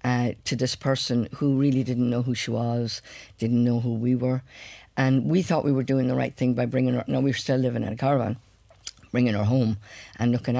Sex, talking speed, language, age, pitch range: female, 230 wpm, English, 50-69, 110-130 Hz